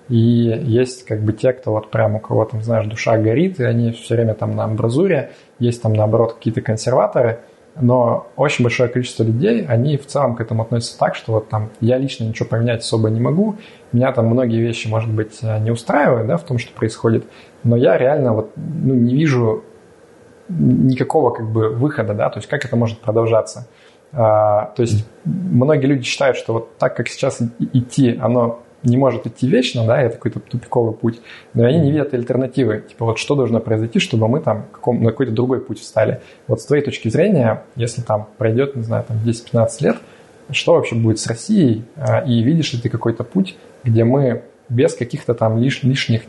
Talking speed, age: 195 wpm, 20-39